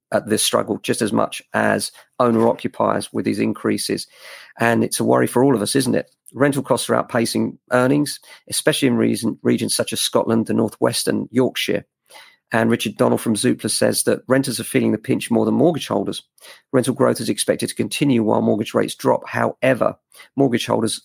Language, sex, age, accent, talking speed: English, male, 40-59, British, 190 wpm